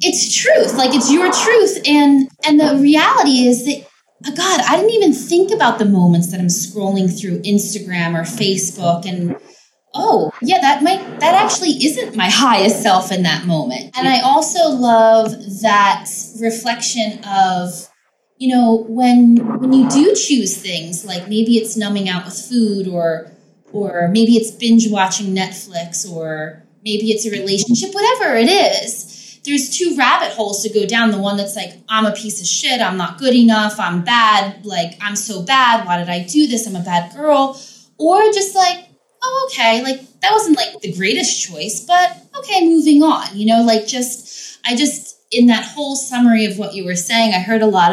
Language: English